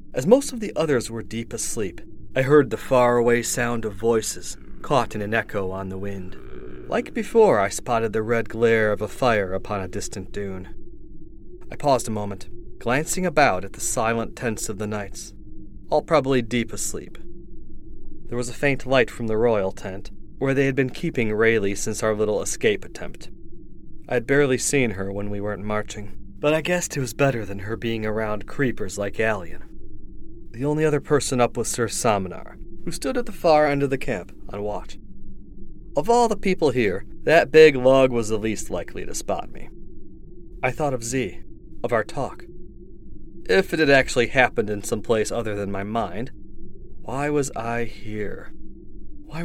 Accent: American